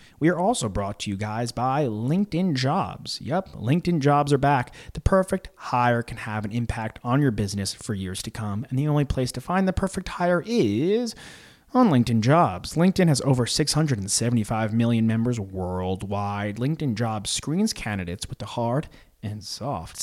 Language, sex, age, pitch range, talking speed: English, male, 30-49, 105-145 Hz, 175 wpm